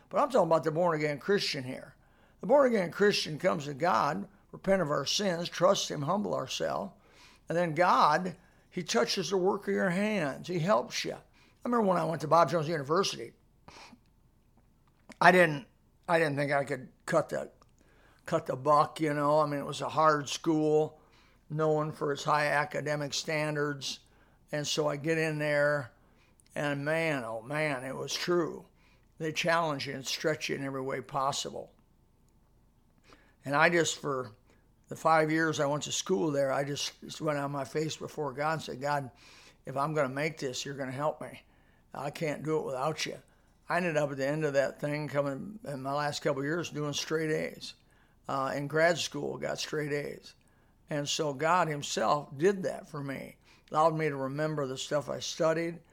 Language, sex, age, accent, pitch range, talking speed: English, male, 60-79, American, 140-165 Hz, 190 wpm